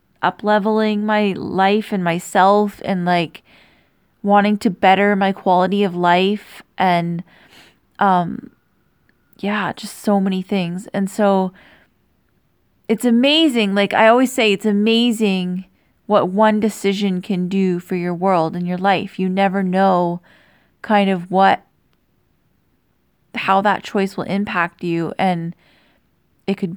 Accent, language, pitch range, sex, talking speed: American, English, 175-205 Hz, female, 130 wpm